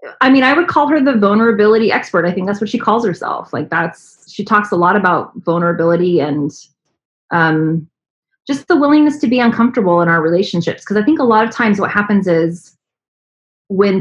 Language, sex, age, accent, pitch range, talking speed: English, female, 30-49, American, 170-225 Hz, 195 wpm